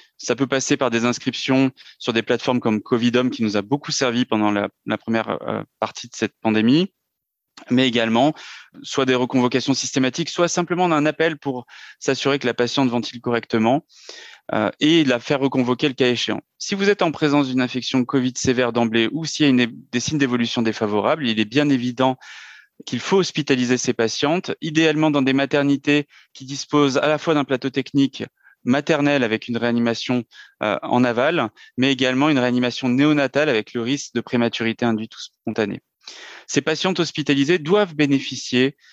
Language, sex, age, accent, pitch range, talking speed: French, male, 30-49, French, 120-145 Hz, 175 wpm